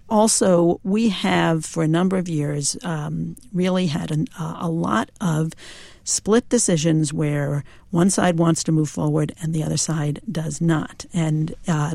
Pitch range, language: 155-185 Hz, English